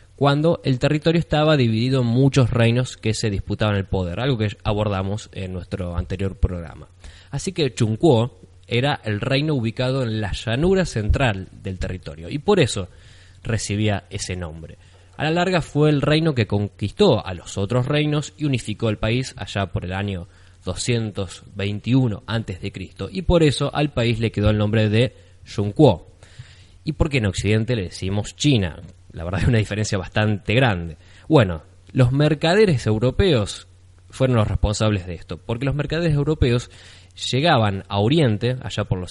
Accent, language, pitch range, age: Argentinian, Spanish, 95-130 Hz, 20-39